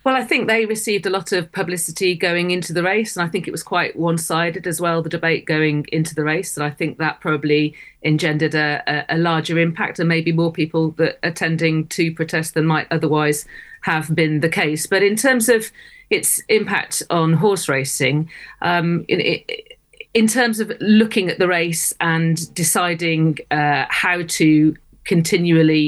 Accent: British